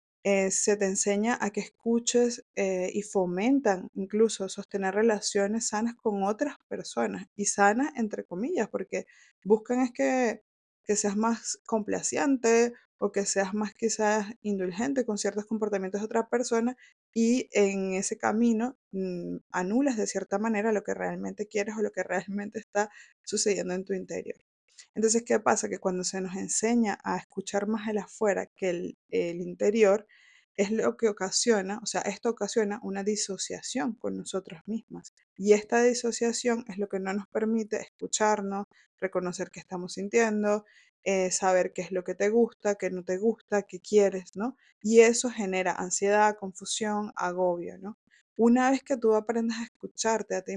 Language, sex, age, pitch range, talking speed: Spanish, female, 20-39, 190-230 Hz, 165 wpm